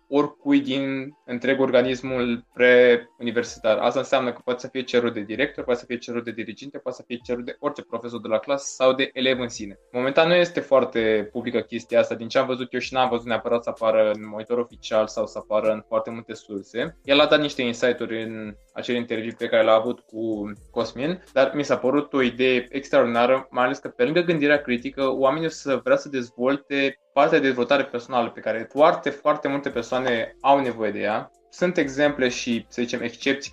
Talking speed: 210 wpm